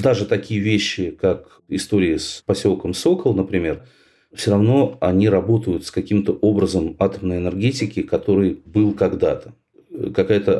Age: 40-59